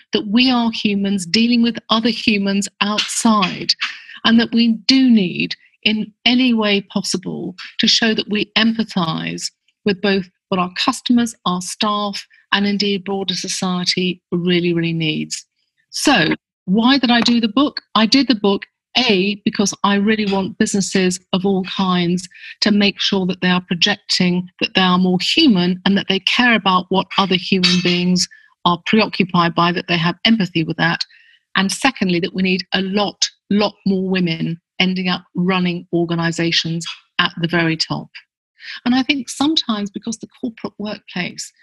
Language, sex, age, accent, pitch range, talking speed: English, female, 50-69, British, 180-230 Hz, 165 wpm